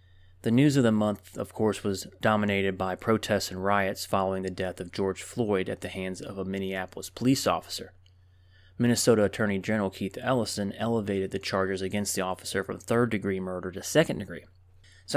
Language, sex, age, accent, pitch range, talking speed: English, male, 30-49, American, 90-110 Hz, 180 wpm